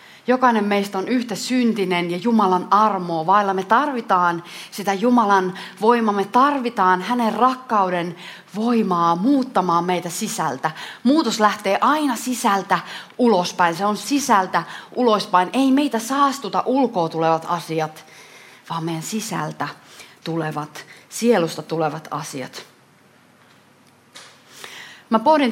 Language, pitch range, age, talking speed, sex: Finnish, 175-235 Hz, 30-49, 110 wpm, female